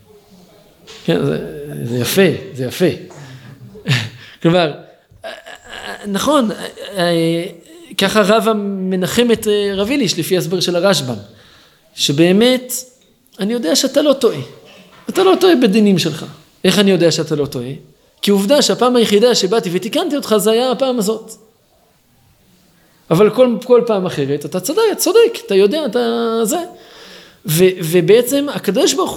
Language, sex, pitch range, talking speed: Hebrew, male, 165-230 Hz, 125 wpm